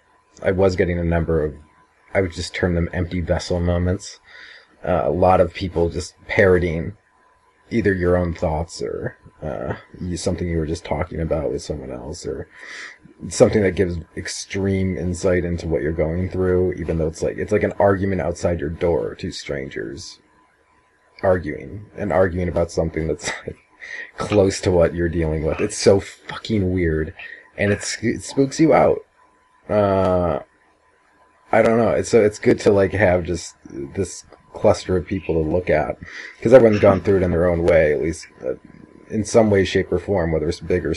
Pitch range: 85-95 Hz